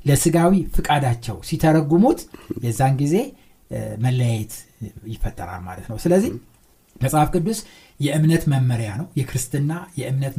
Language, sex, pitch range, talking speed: Amharic, male, 120-175 Hz, 100 wpm